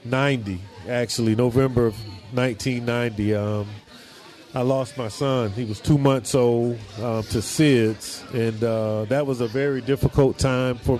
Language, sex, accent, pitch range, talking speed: English, male, American, 120-140 Hz, 145 wpm